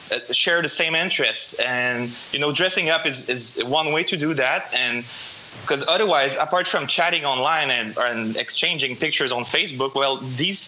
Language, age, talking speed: English, 20-39, 180 wpm